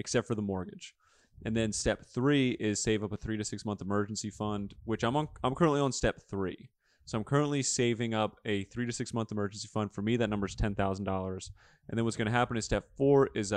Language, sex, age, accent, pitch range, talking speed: English, male, 20-39, American, 105-125 Hz, 240 wpm